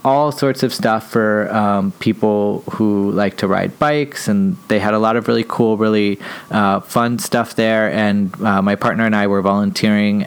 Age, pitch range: 20-39, 100-115 Hz